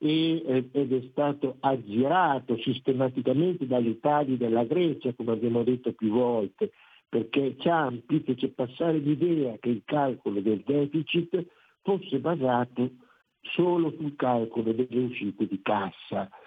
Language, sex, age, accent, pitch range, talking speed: Italian, male, 60-79, native, 125-165 Hz, 120 wpm